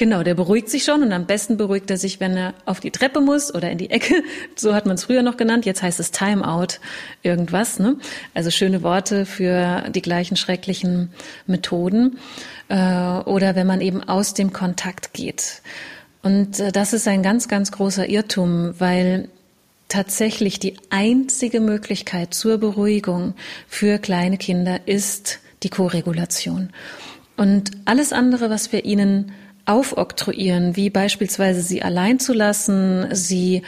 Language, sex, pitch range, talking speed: German, female, 185-235 Hz, 155 wpm